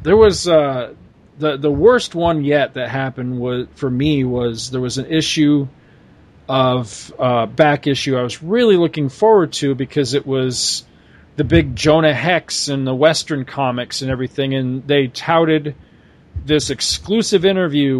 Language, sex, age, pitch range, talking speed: English, male, 40-59, 130-175 Hz, 150 wpm